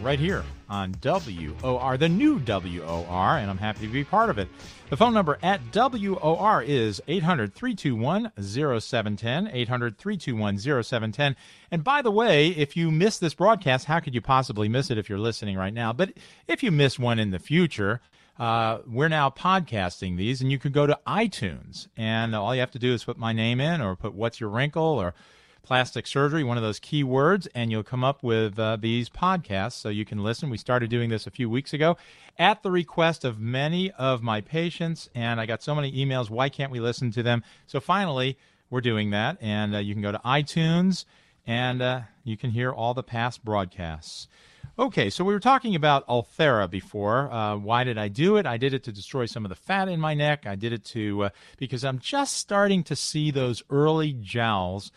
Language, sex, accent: English, male, American